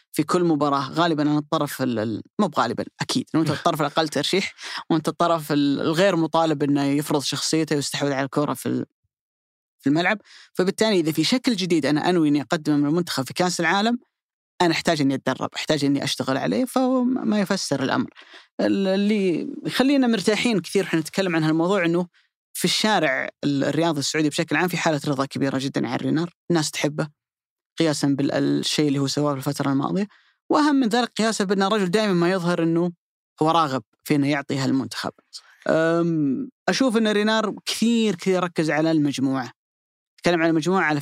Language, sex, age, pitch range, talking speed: Arabic, female, 20-39, 145-190 Hz, 160 wpm